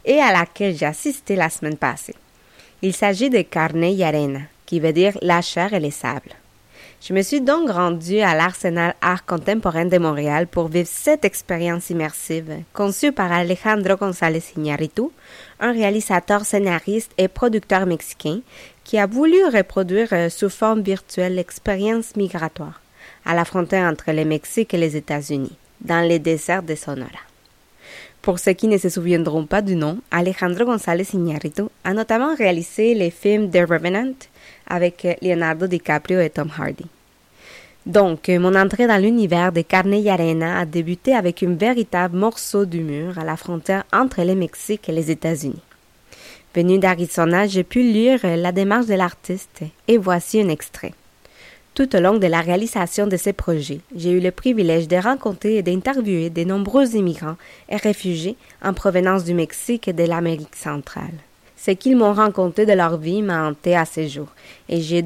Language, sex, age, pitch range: French, female, 20-39, 170-205 Hz